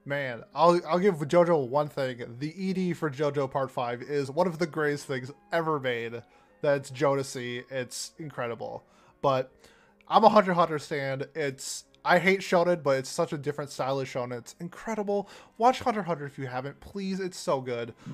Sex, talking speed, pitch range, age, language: male, 185 wpm, 130-170 Hz, 20-39, English